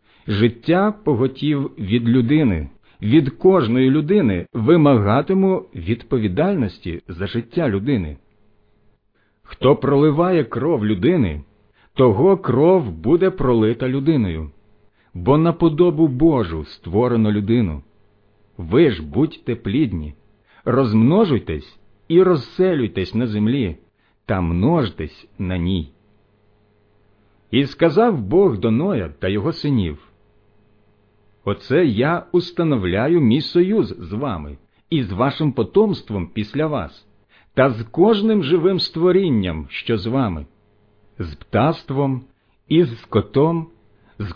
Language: Ukrainian